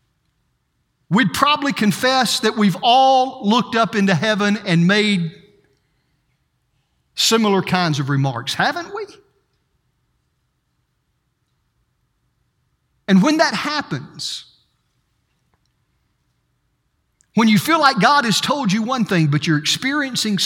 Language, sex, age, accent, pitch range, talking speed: English, male, 50-69, American, 140-205 Hz, 105 wpm